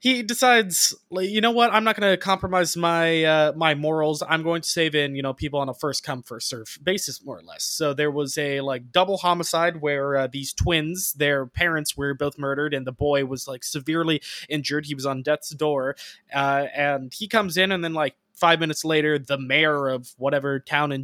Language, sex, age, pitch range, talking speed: English, male, 20-39, 140-170 Hz, 225 wpm